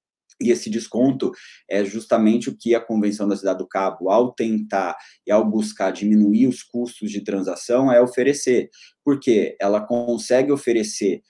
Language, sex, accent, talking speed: Portuguese, male, Brazilian, 155 wpm